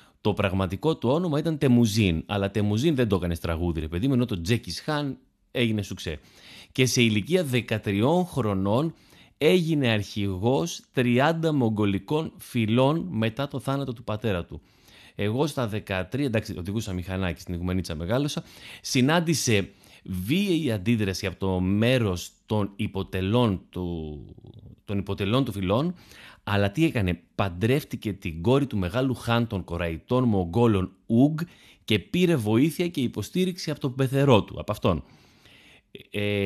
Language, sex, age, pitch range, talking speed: Greek, male, 30-49, 95-135 Hz, 135 wpm